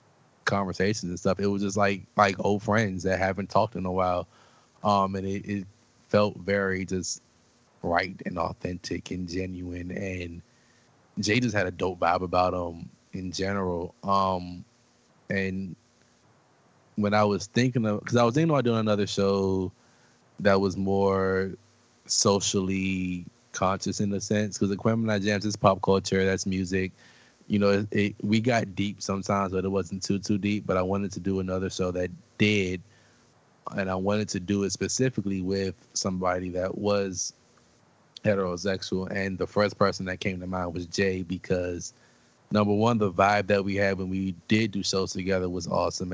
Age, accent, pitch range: 20-39, American, 95-105 Hz